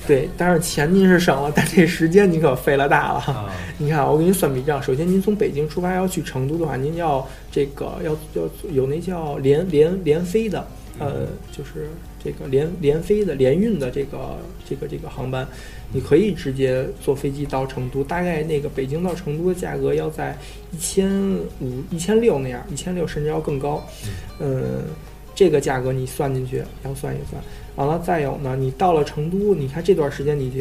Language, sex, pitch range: Chinese, male, 135-175 Hz